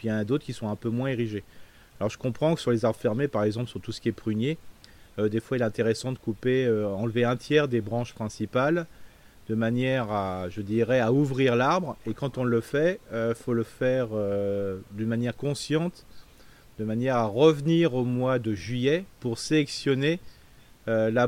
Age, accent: 30-49, French